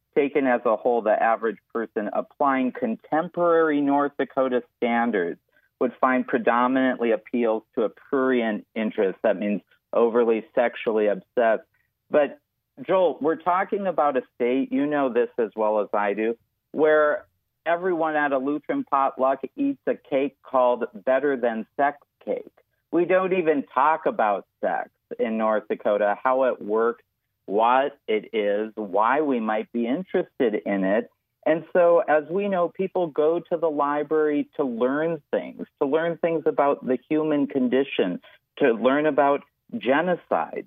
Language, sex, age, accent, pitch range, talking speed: English, male, 50-69, American, 125-170 Hz, 150 wpm